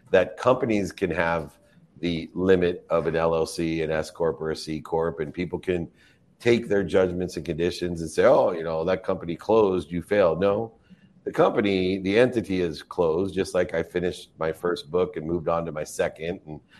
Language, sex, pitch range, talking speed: English, male, 80-100 Hz, 190 wpm